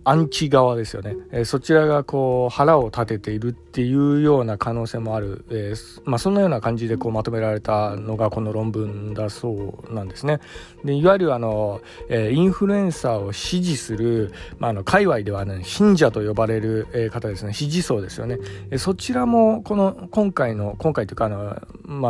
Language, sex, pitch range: Japanese, male, 110-155 Hz